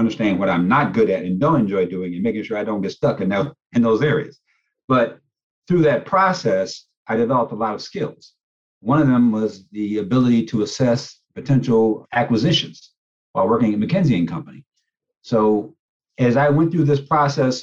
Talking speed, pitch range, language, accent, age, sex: 185 wpm, 105-140 Hz, English, American, 50-69, male